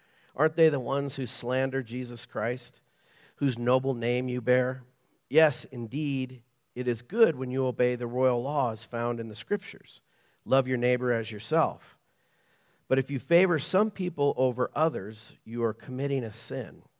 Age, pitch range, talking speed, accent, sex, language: 50-69, 120-145 Hz, 160 wpm, American, male, English